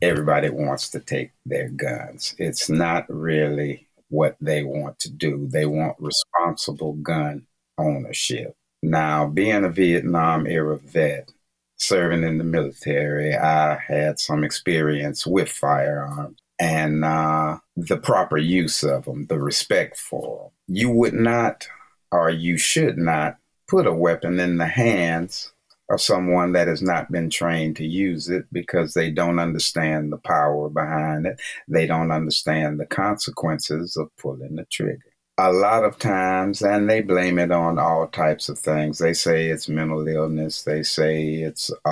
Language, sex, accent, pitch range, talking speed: English, male, American, 75-85 Hz, 155 wpm